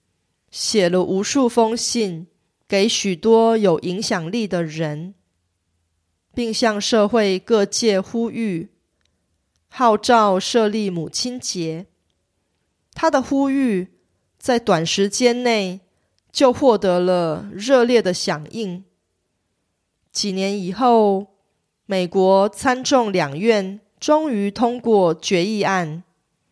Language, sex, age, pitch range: Korean, female, 30-49, 175-230 Hz